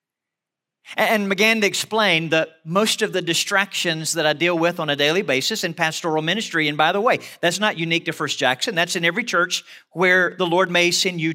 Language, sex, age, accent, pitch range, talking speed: English, male, 40-59, American, 155-220 Hz, 210 wpm